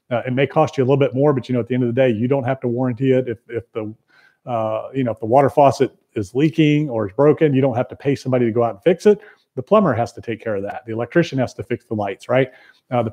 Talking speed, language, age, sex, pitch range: 315 wpm, English, 40-59, male, 115-130 Hz